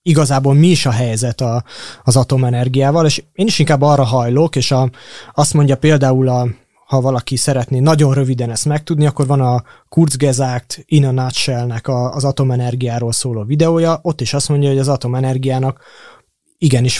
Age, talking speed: 20-39, 160 wpm